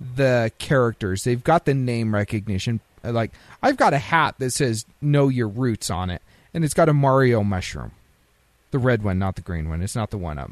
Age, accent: 40-59, American